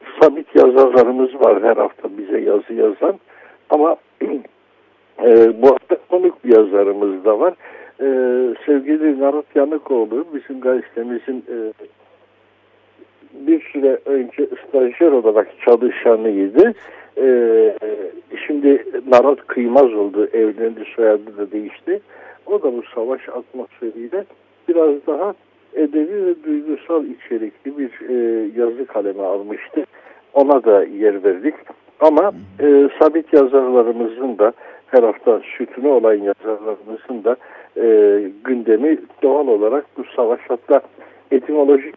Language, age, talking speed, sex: Turkish, 60-79, 110 wpm, male